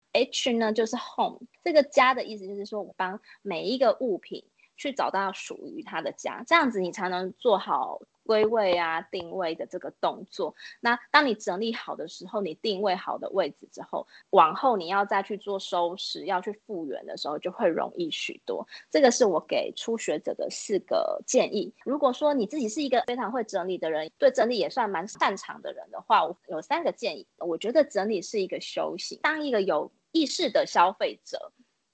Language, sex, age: Chinese, female, 20-39